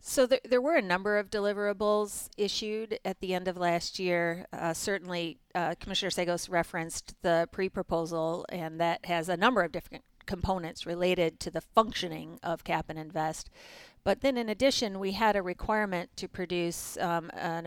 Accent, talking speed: American, 175 wpm